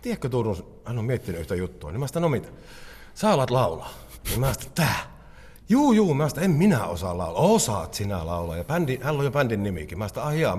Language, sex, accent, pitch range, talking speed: Finnish, male, native, 95-145 Hz, 205 wpm